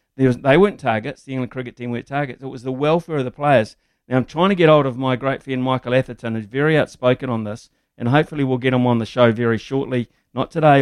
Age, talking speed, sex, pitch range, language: 50-69, 250 wpm, male, 120-145 Hz, English